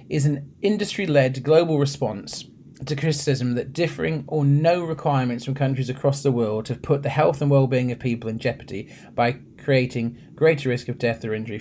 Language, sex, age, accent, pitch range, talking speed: English, male, 30-49, British, 115-145 Hz, 180 wpm